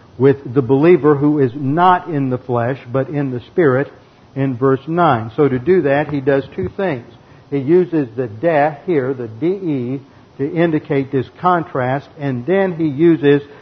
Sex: male